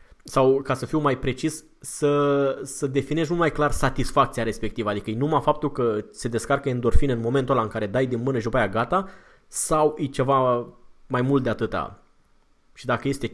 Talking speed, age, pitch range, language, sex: 195 wpm, 20-39, 120-155 Hz, Romanian, male